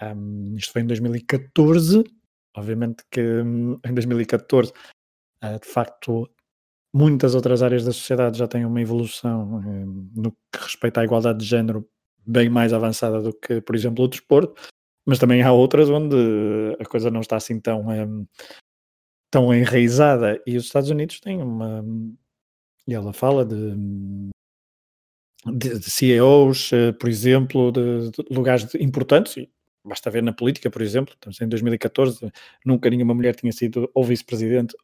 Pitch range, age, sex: 115-130 Hz, 20-39, male